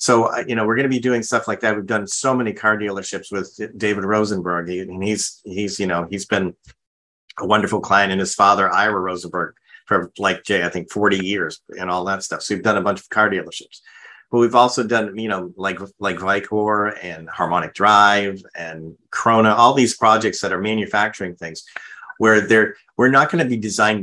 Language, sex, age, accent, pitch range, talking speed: English, male, 40-59, American, 90-110 Hz, 210 wpm